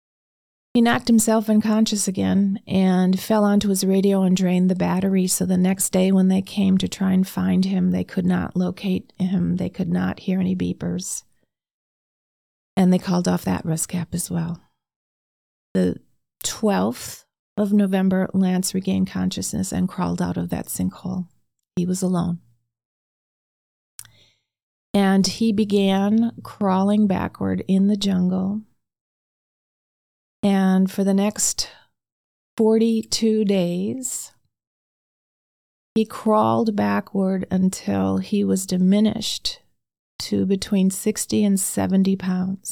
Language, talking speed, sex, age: English, 125 wpm, female, 40-59